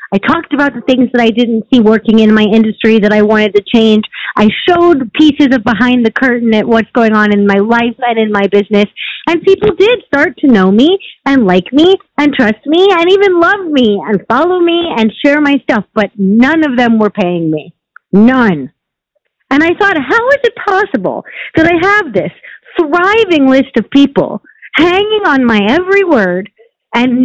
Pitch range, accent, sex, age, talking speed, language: 240-365 Hz, American, female, 40-59, 195 wpm, English